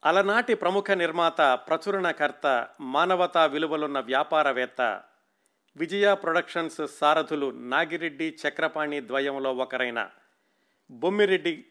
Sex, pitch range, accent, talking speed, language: male, 145-185 Hz, native, 75 wpm, Telugu